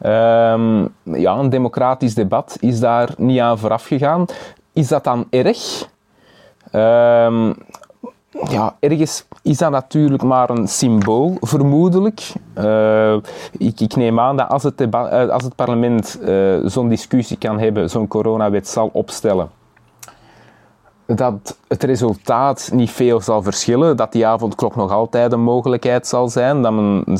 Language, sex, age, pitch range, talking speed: Dutch, male, 30-49, 110-140 Hz, 130 wpm